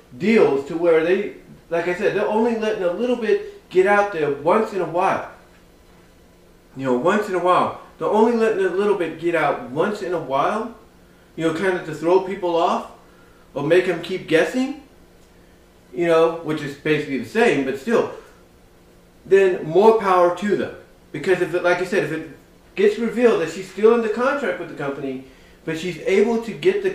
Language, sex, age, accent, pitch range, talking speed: English, male, 40-59, American, 160-210 Hz, 200 wpm